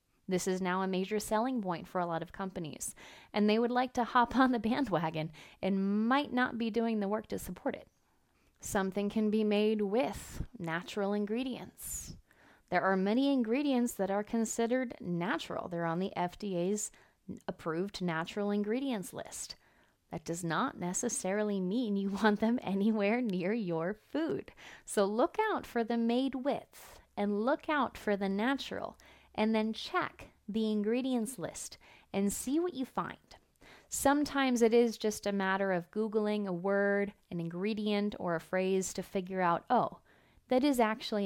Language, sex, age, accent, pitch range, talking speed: English, female, 30-49, American, 185-235 Hz, 165 wpm